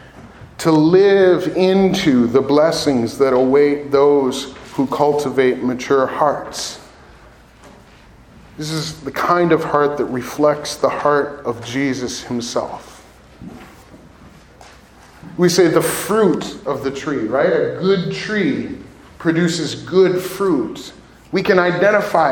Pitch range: 140-180 Hz